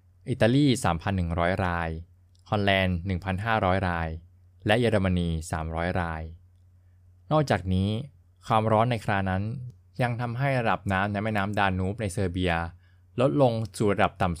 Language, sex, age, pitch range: Thai, male, 20-39, 90-110 Hz